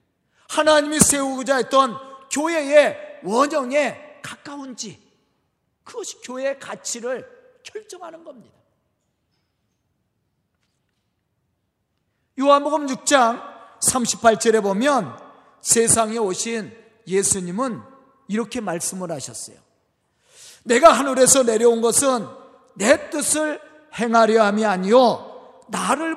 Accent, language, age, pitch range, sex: native, Korean, 40-59, 240-320 Hz, male